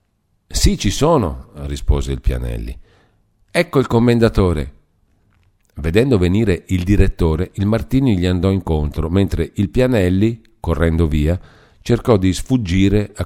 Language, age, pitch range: Italian, 50-69, 75-100 Hz